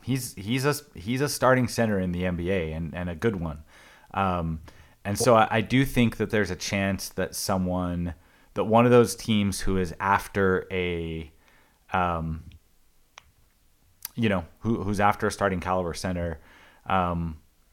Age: 30-49